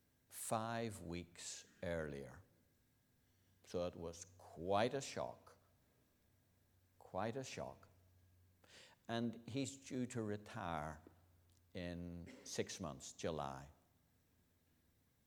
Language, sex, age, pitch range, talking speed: English, male, 60-79, 85-120 Hz, 85 wpm